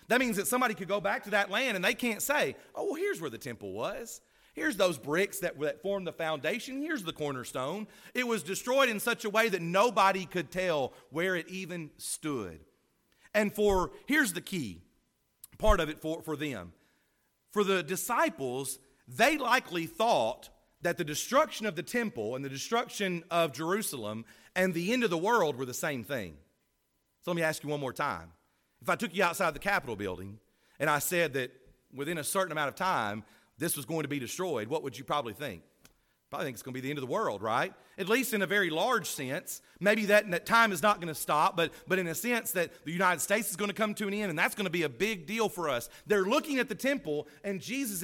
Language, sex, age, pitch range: English, male, 40-59, 155-215 Hz